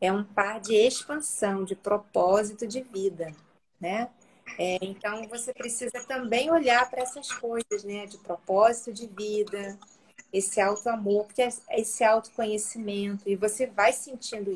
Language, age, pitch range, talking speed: Portuguese, 40-59, 210-265 Hz, 140 wpm